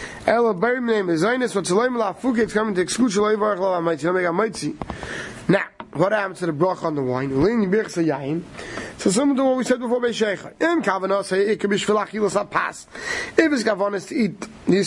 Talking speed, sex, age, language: 90 wpm, male, 30-49, English